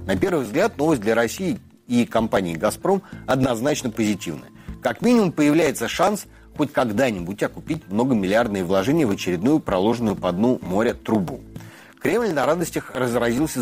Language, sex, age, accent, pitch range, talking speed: Russian, male, 30-49, native, 95-130 Hz, 135 wpm